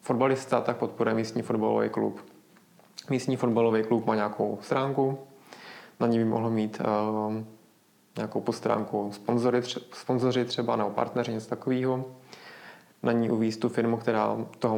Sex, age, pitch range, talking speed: male, 20-39, 110-120 Hz, 140 wpm